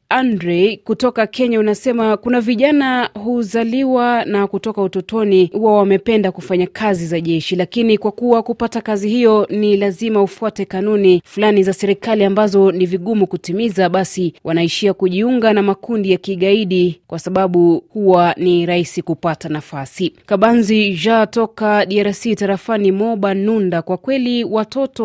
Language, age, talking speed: Swahili, 30-49, 140 wpm